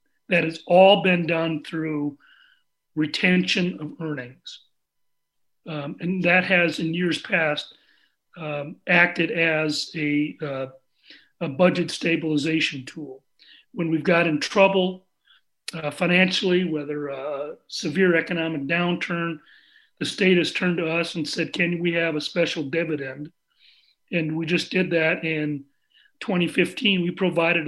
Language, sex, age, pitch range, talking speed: English, male, 40-59, 155-180 Hz, 130 wpm